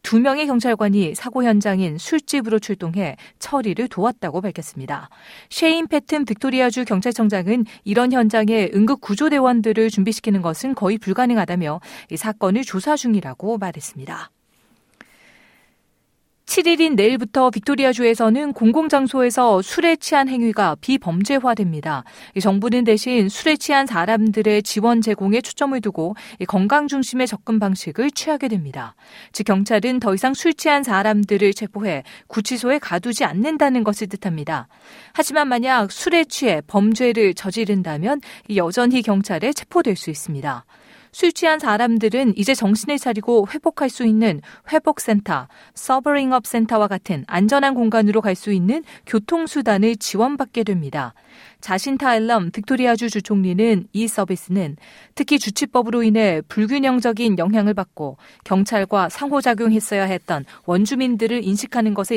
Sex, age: female, 40-59